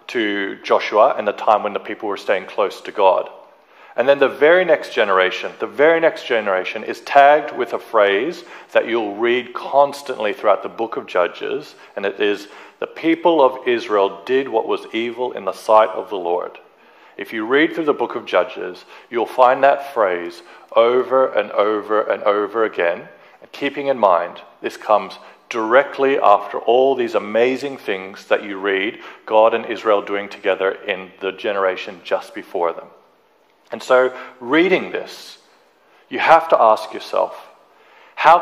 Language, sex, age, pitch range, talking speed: English, male, 40-59, 110-185 Hz, 170 wpm